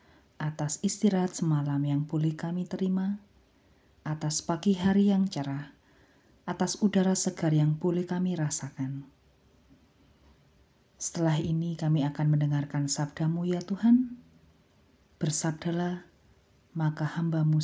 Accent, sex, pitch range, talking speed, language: native, female, 140-190 Hz, 100 wpm, Indonesian